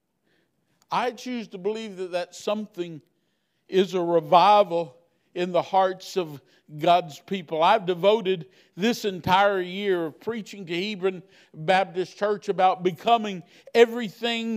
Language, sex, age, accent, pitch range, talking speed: English, male, 50-69, American, 165-205 Hz, 125 wpm